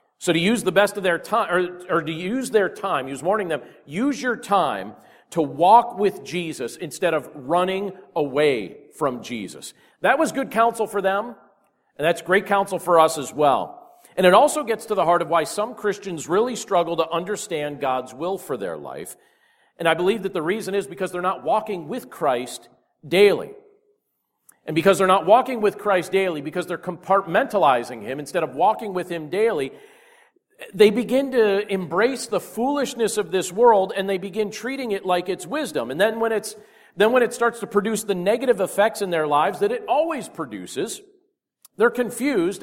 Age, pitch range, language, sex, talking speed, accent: 40-59, 175-235 Hz, English, male, 190 wpm, American